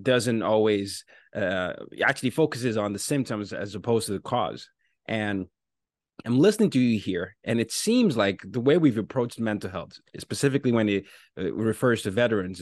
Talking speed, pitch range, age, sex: 165 wpm, 105-135 Hz, 30-49, male